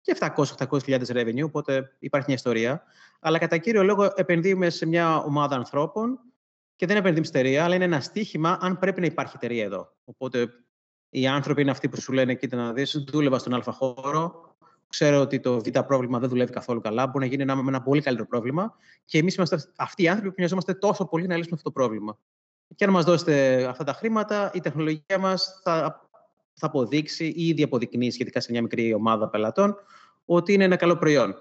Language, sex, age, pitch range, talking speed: Greek, male, 30-49, 125-170 Hz, 195 wpm